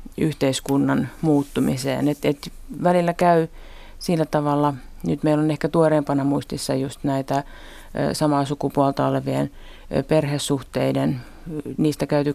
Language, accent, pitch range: Finnish, native, 140-160 Hz